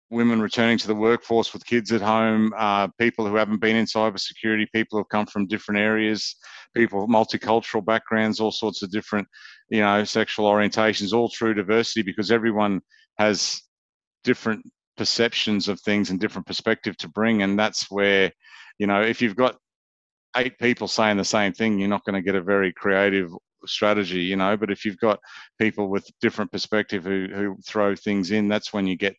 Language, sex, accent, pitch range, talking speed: English, male, Australian, 95-110 Hz, 185 wpm